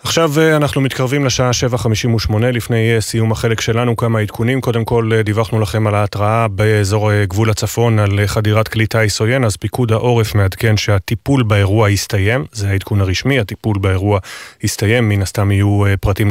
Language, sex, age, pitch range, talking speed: Hebrew, male, 30-49, 105-120 Hz, 155 wpm